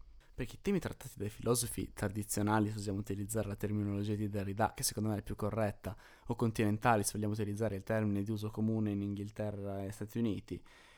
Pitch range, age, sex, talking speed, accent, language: 95-115 Hz, 20-39, male, 195 wpm, native, Italian